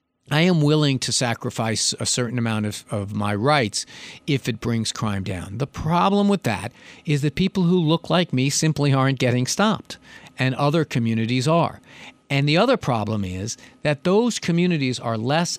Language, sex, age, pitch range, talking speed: English, male, 50-69, 115-150 Hz, 175 wpm